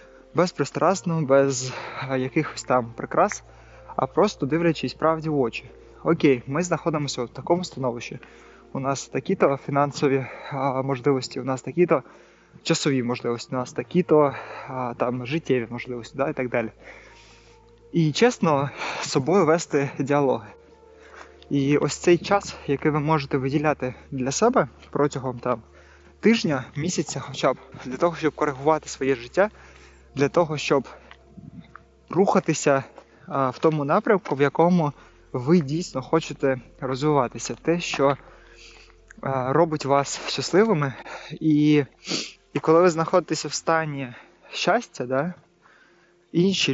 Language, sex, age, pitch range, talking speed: Ukrainian, male, 20-39, 130-165 Hz, 120 wpm